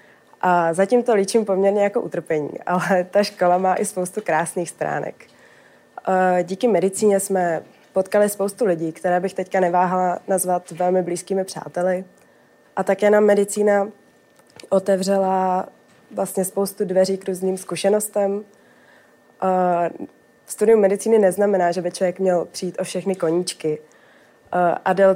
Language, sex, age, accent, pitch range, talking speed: Czech, female, 20-39, native, 175-200 Hz, 125 wpm